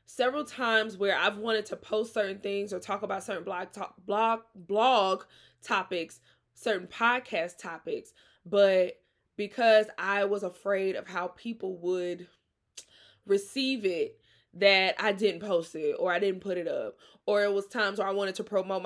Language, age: English, 20-39